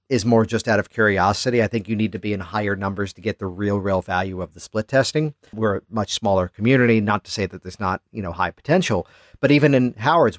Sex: male